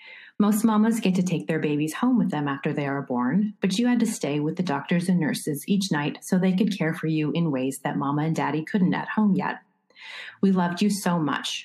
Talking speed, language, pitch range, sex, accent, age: 240 wpm, English, 155-190 Hz, female, American, 30-49